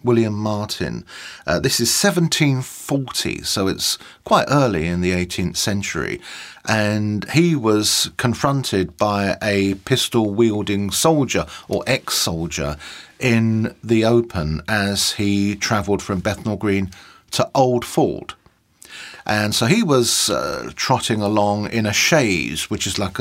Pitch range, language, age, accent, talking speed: 95-125 Hz, English, 40-59, British, 125 wpm